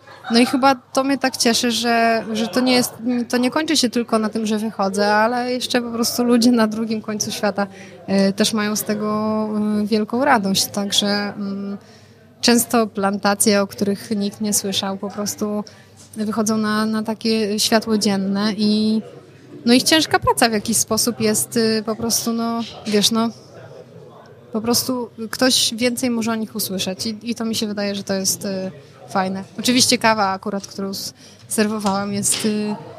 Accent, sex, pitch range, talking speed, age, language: native, female, 200-225 Hz, 165 wpm, 20-39, Polish